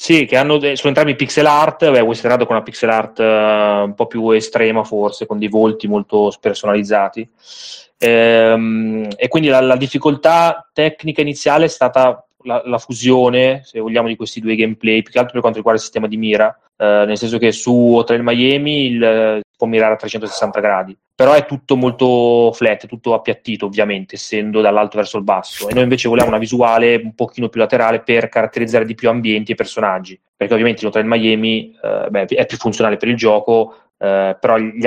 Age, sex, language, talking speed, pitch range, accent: 20-39, male, Italian, 195 wpm, 110-125 Hz, native